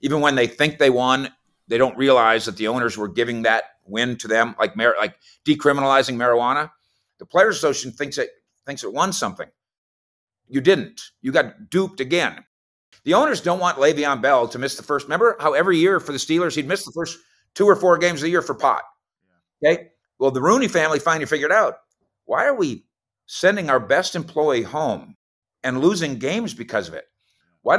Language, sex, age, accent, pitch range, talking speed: English, male, 50-69, American, 125-175 Hz, 195 wpm